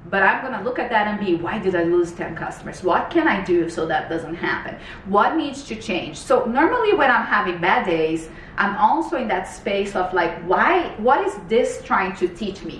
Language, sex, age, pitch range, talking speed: English, female, 30-49, 170-210 Hz, 225 wpm